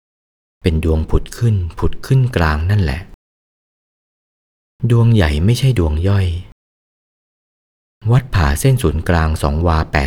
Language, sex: Thai, male